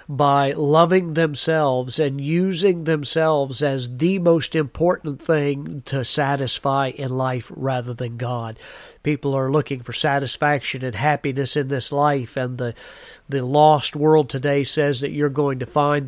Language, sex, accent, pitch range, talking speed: English, male, American, 135-160 Hz, 150 wpm